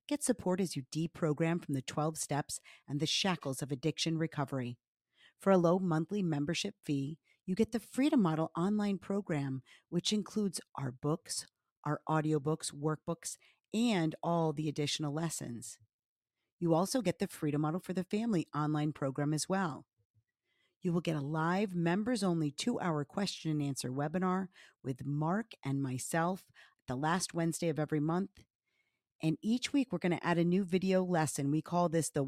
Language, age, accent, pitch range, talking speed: English, 50-69, American, 145-190 Hz, 170 wpm